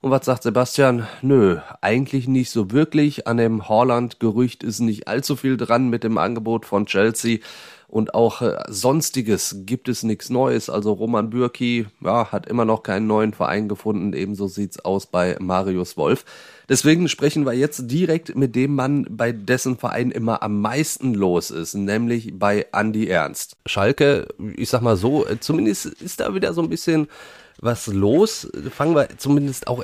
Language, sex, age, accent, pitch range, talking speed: German, male, 30-49, German, 105-130 Hz, 170 wpm